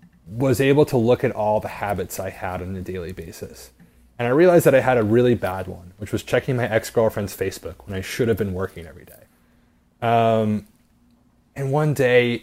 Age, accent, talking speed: 30-49, American, 205 wpm